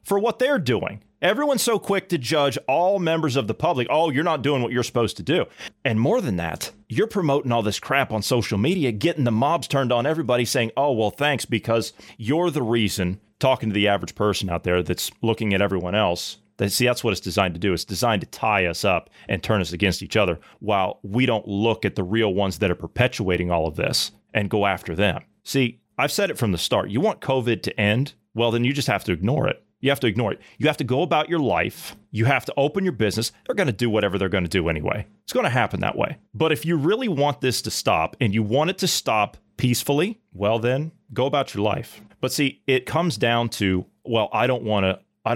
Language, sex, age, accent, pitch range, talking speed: English, male, 30-49, American, 105-140 Hz, 240 wpm